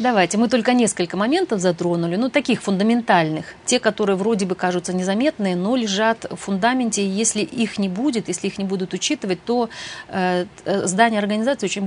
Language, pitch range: Russian, 180-225 Hz